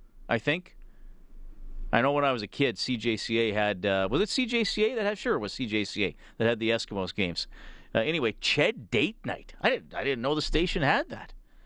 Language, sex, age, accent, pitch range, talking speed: English, male, 40-59, American, 110-150 Hz, 205 wpm